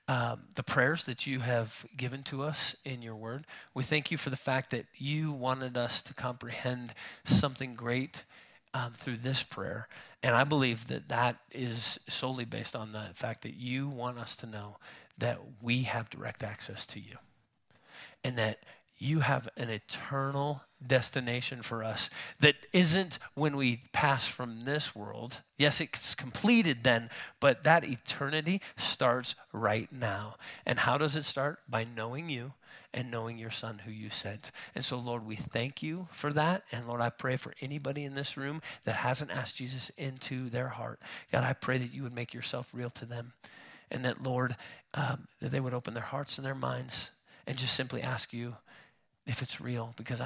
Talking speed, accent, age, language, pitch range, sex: 185 wpm, American, 30-49, English, 115-140 Hz, male